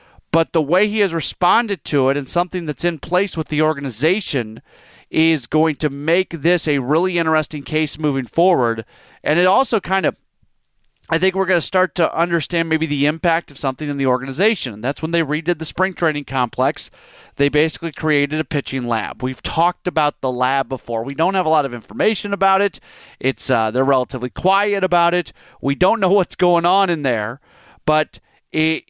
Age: 40-59